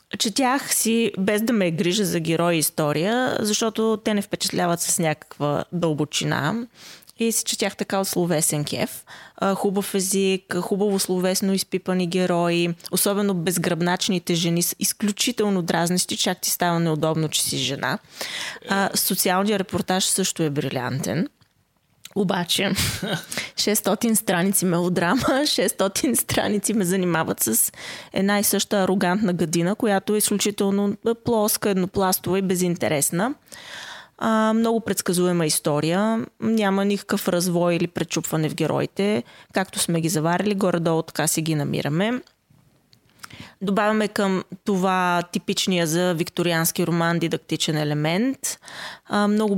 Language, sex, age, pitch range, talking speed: Bulgarian, female, 20-39, 170-205 Hz, 120 wpm